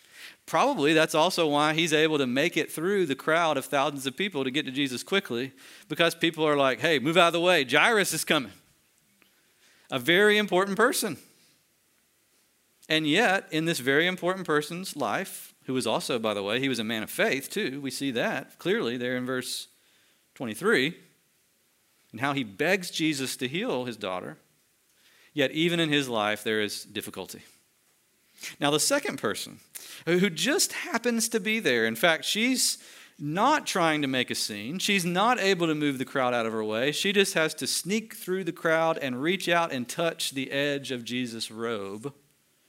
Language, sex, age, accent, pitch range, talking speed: English, male, 40-59, American, 125-175 Hz, 185 wpm